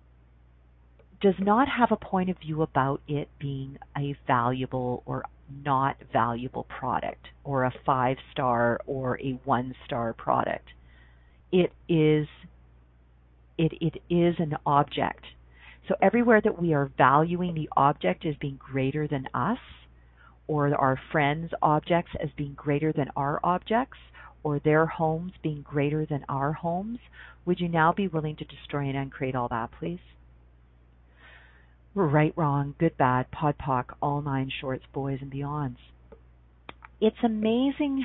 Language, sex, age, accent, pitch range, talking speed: English, female, 40-59, American, 125-170 Hz, 140 wpm